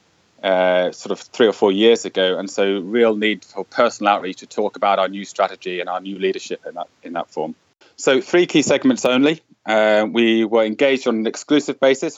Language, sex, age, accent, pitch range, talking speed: English, male, 20-39, British, 100-120 Hz, 210 wpm